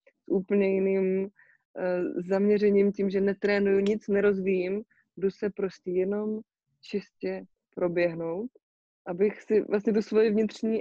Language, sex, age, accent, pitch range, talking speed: Czech, female, 20-39, native, 180-200 Hz, 105 wpm